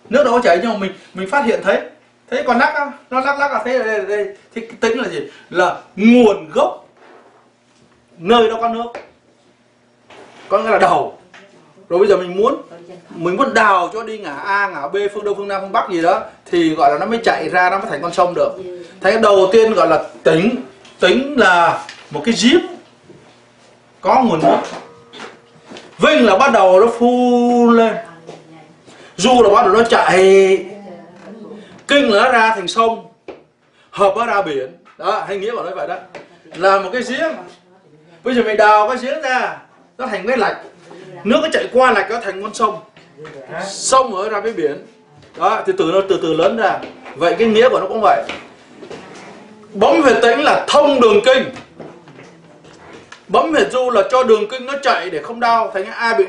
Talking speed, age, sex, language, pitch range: 235 wpm, 30-49, male, English, 190-240 Hz